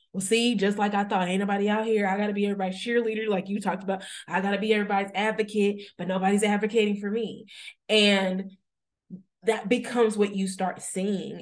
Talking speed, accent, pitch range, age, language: 190 wpm, American, 185-220 Hz, 20-39, English